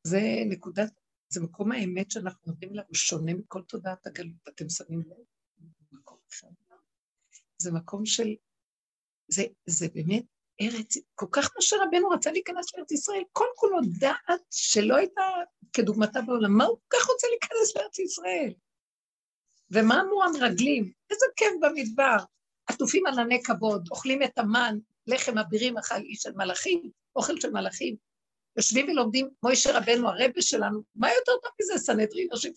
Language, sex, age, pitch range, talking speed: Hebrew, female, 60-79, 195-315 Hz, 145 wpm